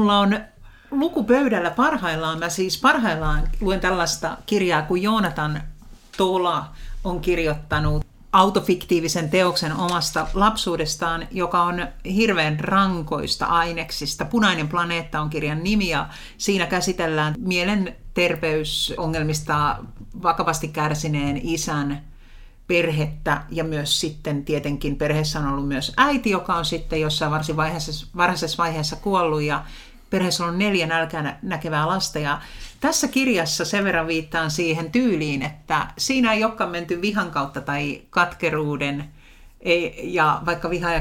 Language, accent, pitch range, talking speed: Finnish, native, 150-185 Hz, 120 wpm